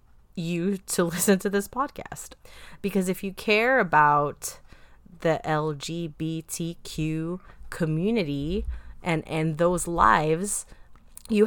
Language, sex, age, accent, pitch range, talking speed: English, female, 30-49, American, 160-215 Hz, 100 wpm